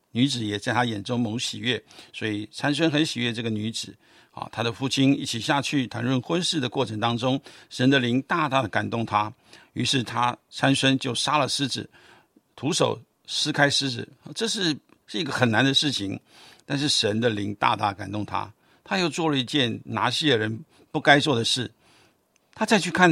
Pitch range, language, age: 115-150 Hz, Chinese, 60-79